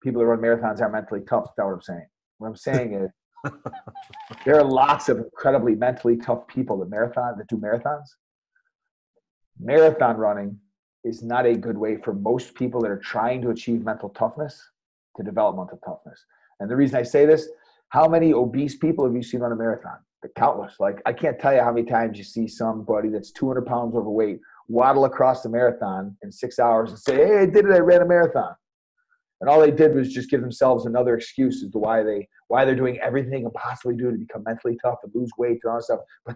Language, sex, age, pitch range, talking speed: English, male, 40-59, 115-160 Hz, 220 wpm